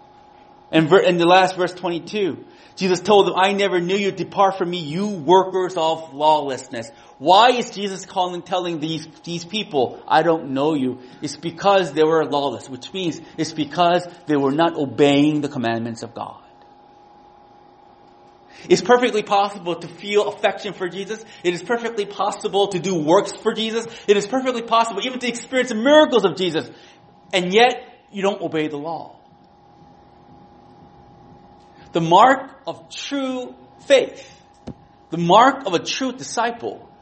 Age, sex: 30-49, male